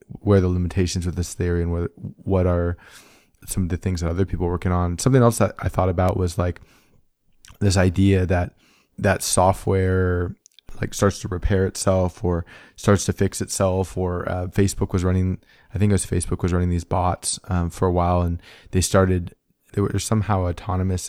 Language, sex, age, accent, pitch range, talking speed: English, male, 20-39, American, 85-95 Hz, 195 wpm